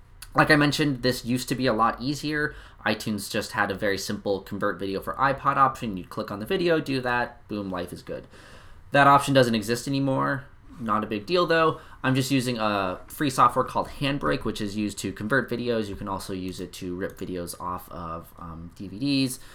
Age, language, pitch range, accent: 20-39, English, 95-130 Hz, American